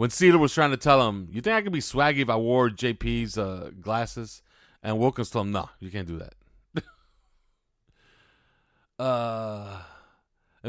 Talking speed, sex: 170 wpm, male